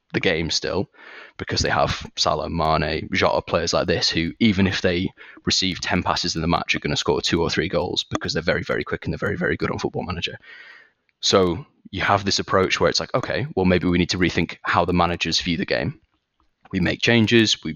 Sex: male